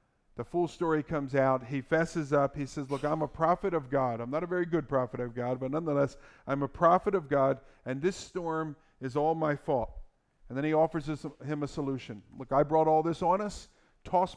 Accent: American